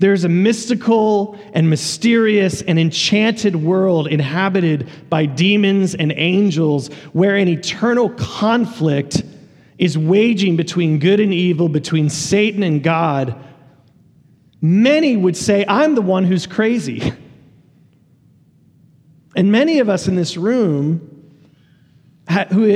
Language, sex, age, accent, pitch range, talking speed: English, male, 30-49, American, 150-190 Hz, 115 wpm